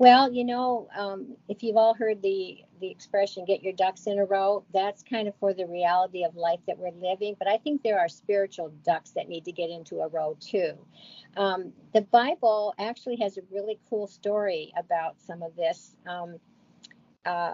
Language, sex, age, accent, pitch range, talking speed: English, female, 50-69, American, 185-220 Hz, 200 wpm